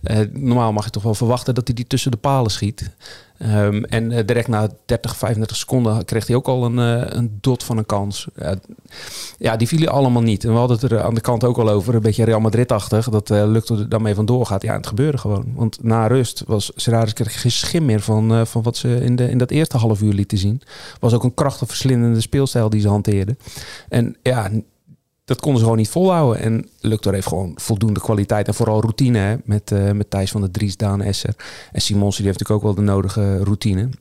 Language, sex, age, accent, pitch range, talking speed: Dutch, male, 40-59, Dutch, 105-120 Hz, 230 wpm